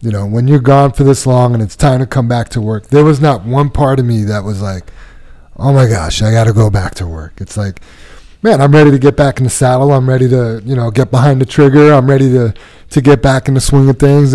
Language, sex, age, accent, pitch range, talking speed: English, male, 30-49, American, 110-140 Hz, 280 wpm